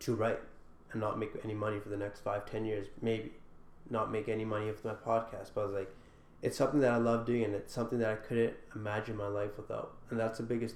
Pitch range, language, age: 105-120 Hz, English, 20-39